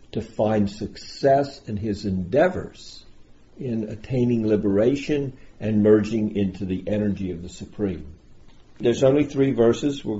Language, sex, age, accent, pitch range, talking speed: English, male, 50-69, American, 95-120 Hz, 130 wpm